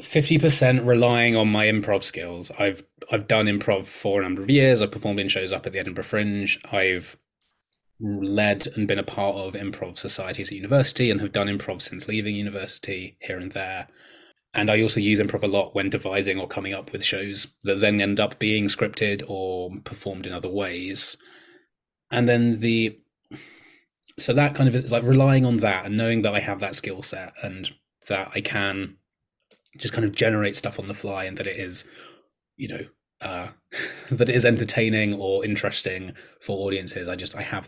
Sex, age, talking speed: male, 20-39, 195 wpm